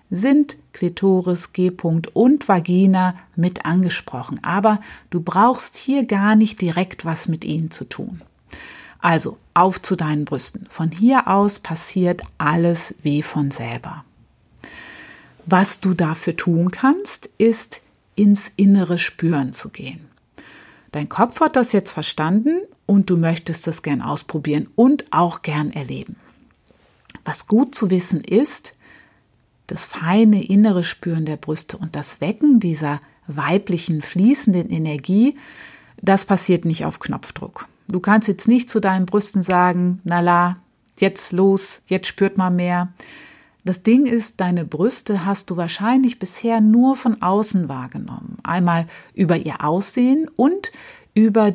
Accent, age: German, 50-69